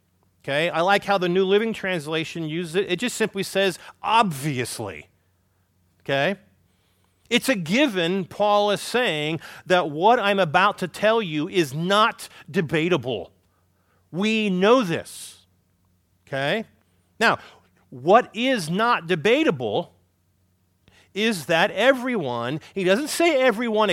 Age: 40-59